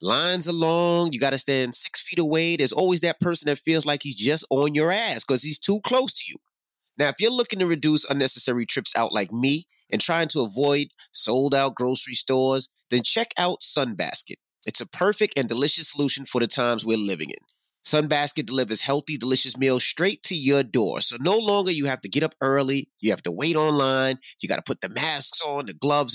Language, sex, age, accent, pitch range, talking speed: English, male, 30-49, American, 130-170 Hz, 215 wpm